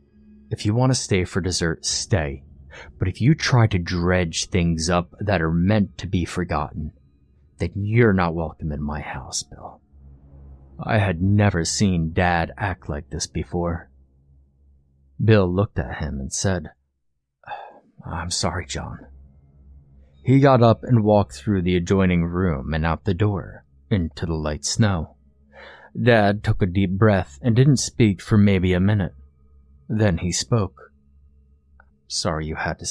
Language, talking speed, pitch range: English, 155 wpm, 70-105 Hz